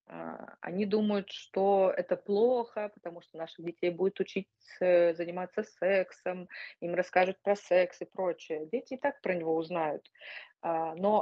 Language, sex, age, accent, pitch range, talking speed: Russian, female, 20-39, native, 160-195 Hz, 140 wpm